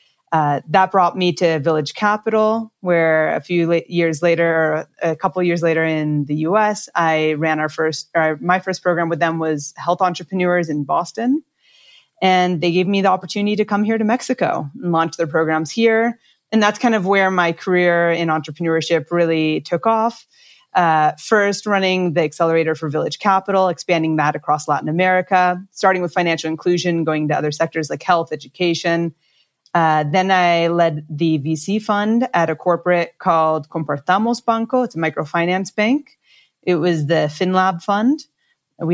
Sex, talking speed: female, 165 wpm